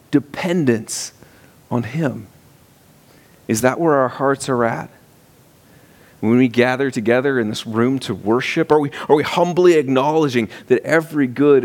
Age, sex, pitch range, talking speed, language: 40-59, male, 115-170 Hz, 145 wpm, English